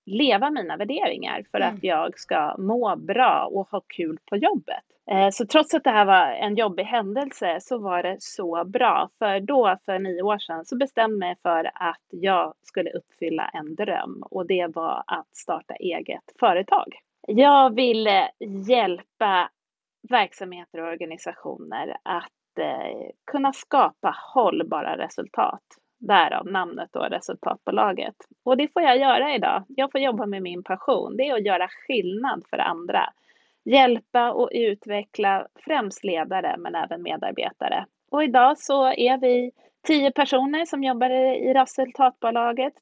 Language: Swedish